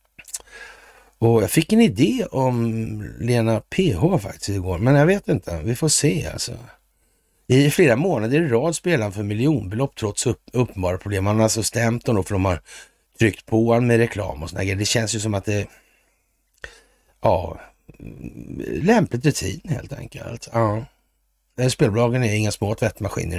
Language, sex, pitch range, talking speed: Swedish, male, 105-150 Hz, 165 wpm